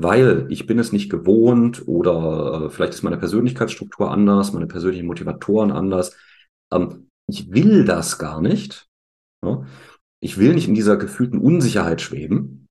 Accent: German